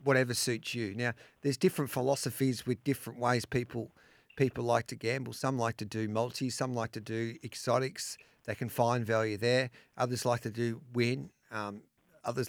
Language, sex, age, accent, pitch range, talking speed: English, male, 40-59, Australian, 115-140 Hz, 180 wpm